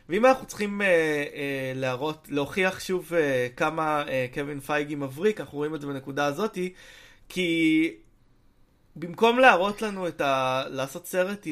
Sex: male